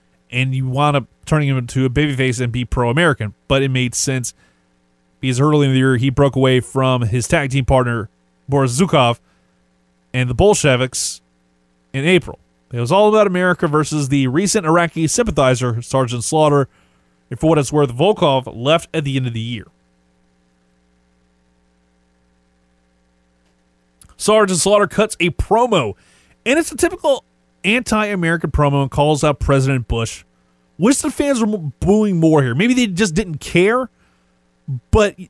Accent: American